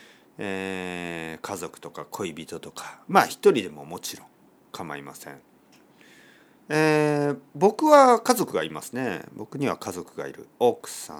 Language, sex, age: Japanese, male, 40-59